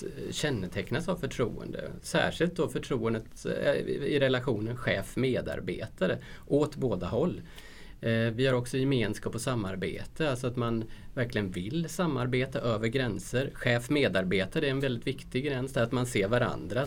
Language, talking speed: Swedish, 130 wpm